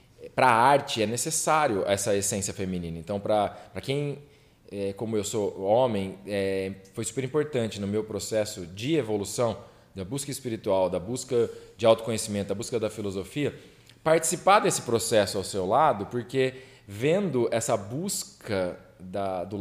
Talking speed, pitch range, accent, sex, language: 145 wpm, 105-155 Hz, Brazilian, male, Portuguese